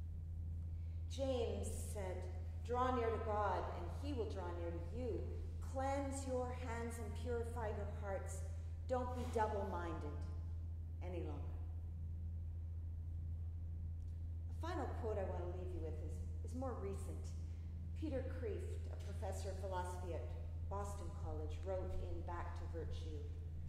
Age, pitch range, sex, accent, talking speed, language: 40-59, 80-85 Hz, female, American, 130 wpm, English